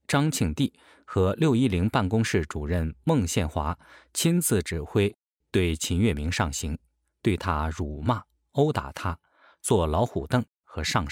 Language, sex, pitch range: Chinese, male, 80-115 Hz